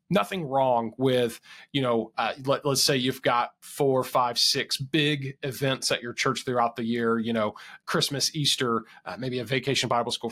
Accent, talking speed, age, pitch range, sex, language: American, 180 wpm, 30-49, 120-150 Hz, male, English